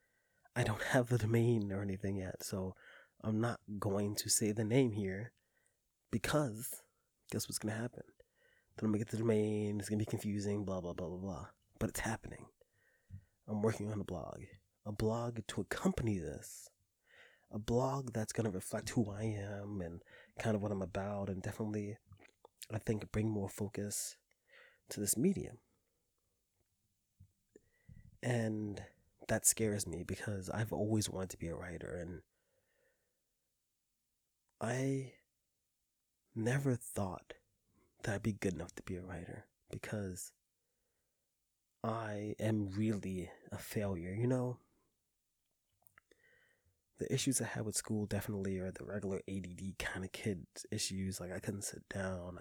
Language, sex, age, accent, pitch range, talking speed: English, male, 20-39, American, 95-115 Hz, 150 wpm